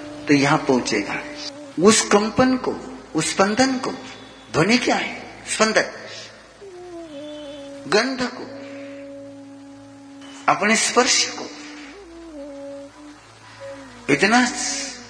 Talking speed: 75 wpm